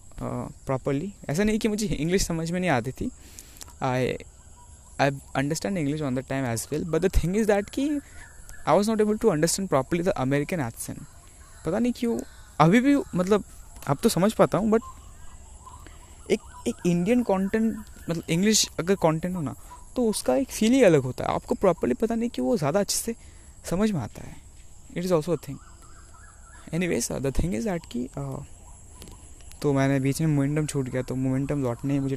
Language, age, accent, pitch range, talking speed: Hindi, 20-39, native, 125-185 Hz, 190 wpm